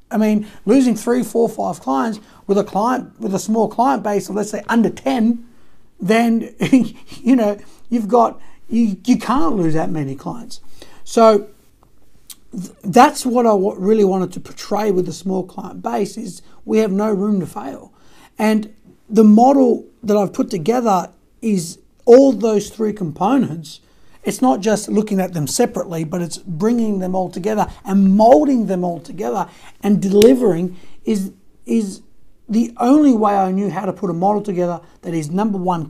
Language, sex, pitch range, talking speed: English, male, 180-225 Hz, 170 wpm